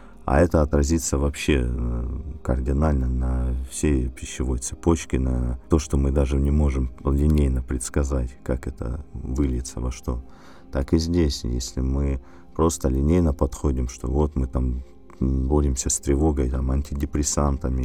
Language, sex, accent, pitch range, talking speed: Russian, male, native, 65-75 Hz, 135 wpm